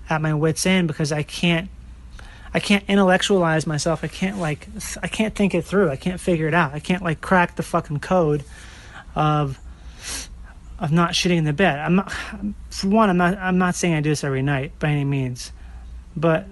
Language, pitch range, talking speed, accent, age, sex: English, 135-180 Hz, 205 wpm, American, 30-49, male